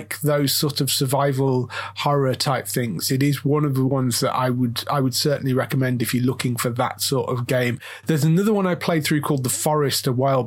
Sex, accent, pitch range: male, British, 130-165 Hz